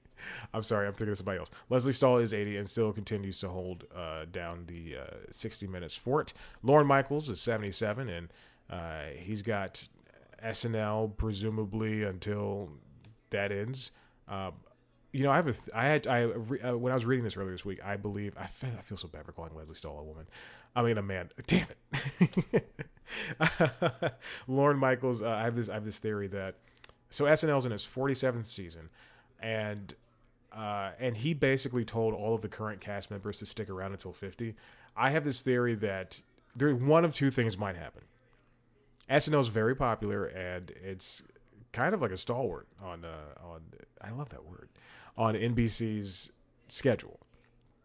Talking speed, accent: 180 wpm, American